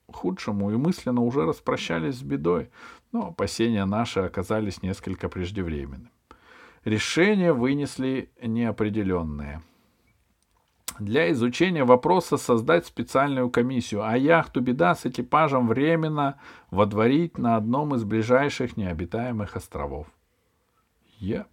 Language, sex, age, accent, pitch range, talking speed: Russian, male, 50-69, native, 110-160 Hz, 100 wpm